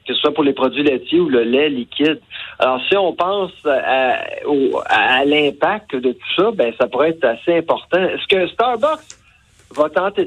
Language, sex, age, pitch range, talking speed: French, male, 50-69, 130-185 Hz, 195 wpm